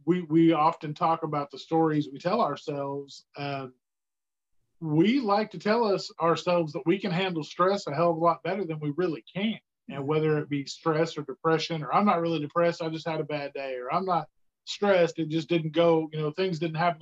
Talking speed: 220 wpm